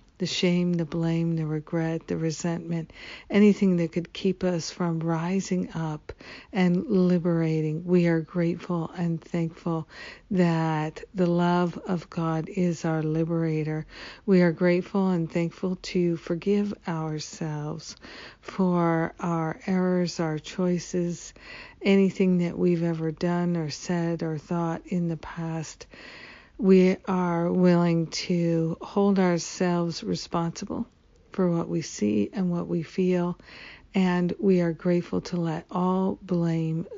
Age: 60-79